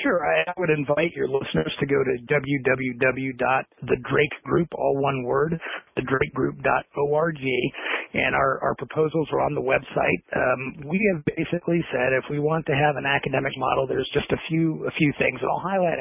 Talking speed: 170 wpm